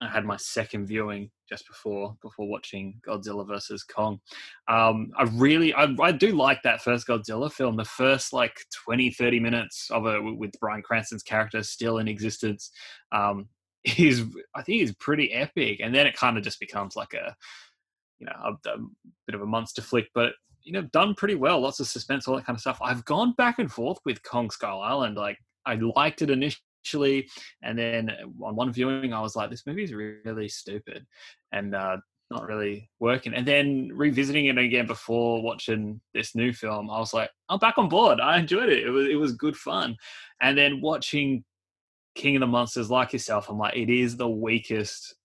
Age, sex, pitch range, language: 20-39, male, 105-135 Hz, English